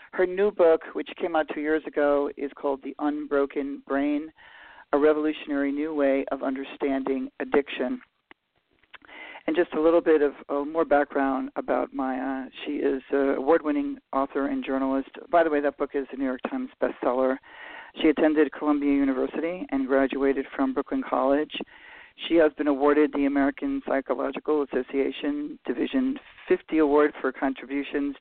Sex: male